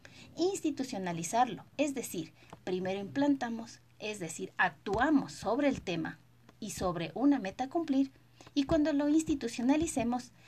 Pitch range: 175-275 Hz